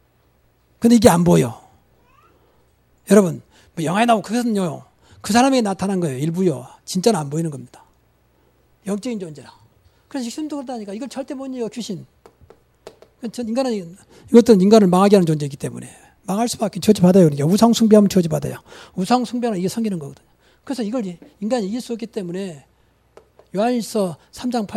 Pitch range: 160-235 Hz